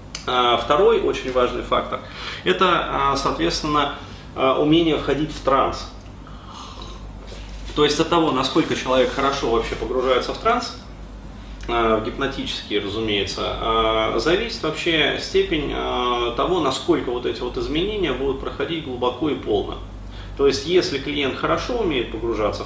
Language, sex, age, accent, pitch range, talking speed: Russian, male, 30-49, native, 105-140 Hz, 115 wpm